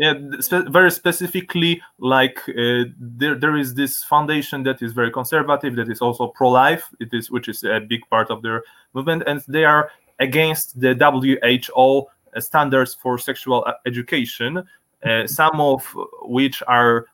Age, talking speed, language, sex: 20-39, 155 wpm, English, male